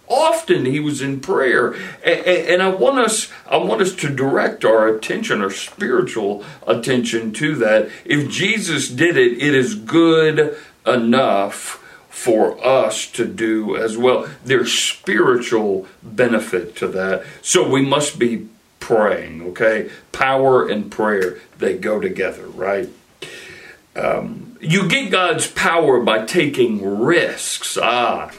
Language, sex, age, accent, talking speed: English, male, 60-79, American, 130 wpm